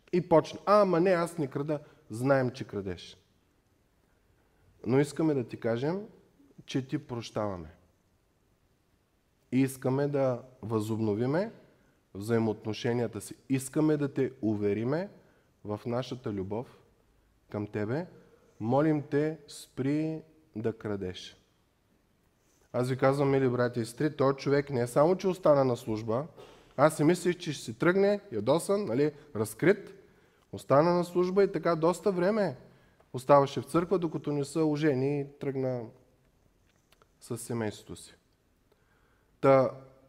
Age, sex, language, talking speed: 20-39, male, Bulgarian, 125 wpm